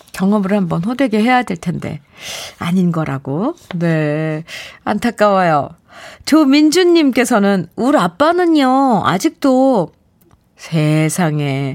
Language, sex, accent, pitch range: Korean, female, native, 185-270 Hz